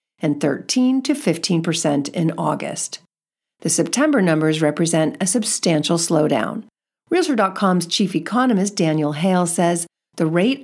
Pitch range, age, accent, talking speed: 165-220 Hz, 50-69, American, 125 wpm